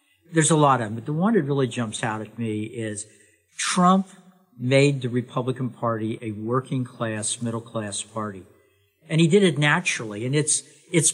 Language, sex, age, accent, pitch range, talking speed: English, male, 60-79, American, 130-185 Hz, 170 wpm